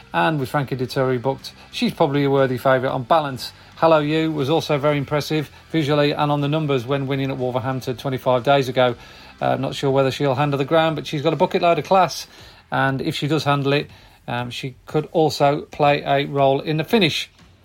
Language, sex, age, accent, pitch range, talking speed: English, male, 40-59, British, 130-160 Hz, 210 wpm